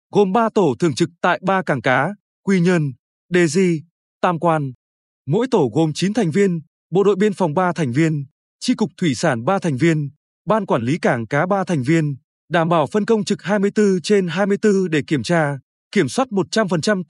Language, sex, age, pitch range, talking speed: Vietnamese, male, 20-39, 155-205 Hz, 200 wpm